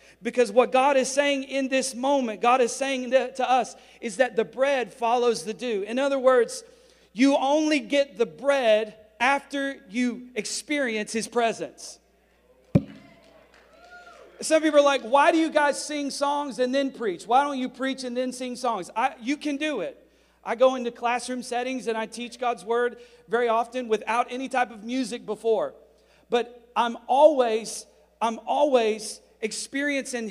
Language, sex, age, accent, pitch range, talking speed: English, male, 40-59, American, 225-275 Hz, 165 wpm